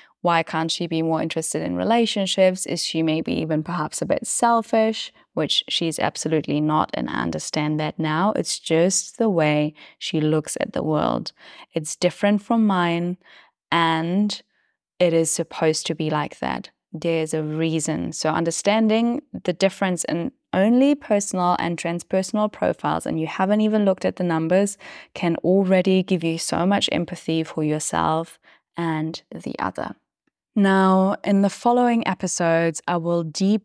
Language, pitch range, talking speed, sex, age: English, 160-190 Hz, 155 wpm, female, 10-29